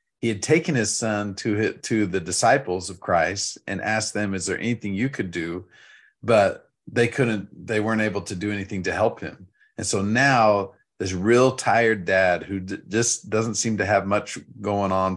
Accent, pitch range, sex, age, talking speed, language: American, 95-110 Hz, male, 40-59, 185 wpm, English